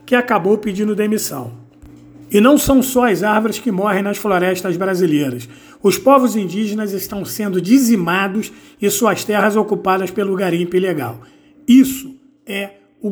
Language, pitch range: Portuguese, 180-220 Hz